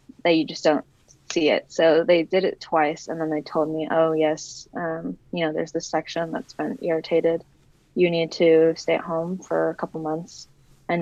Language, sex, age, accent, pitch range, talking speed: English, female, 20-39, American, 160-185 Hz, 205 wpm